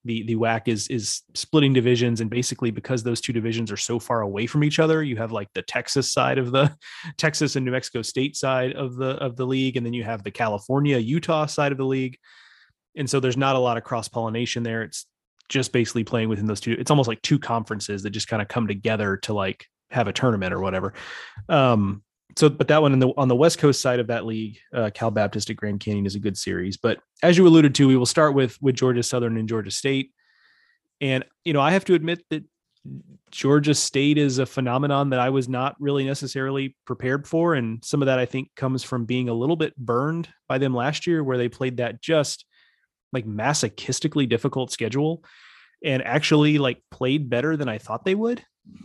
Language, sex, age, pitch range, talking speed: English, male, 30-49, 115-145 Hz, 220 wpm